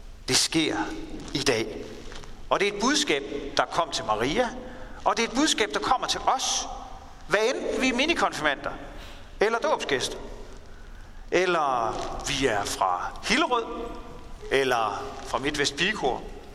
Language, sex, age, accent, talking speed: Danish, male, 40-59, native, 140 wpm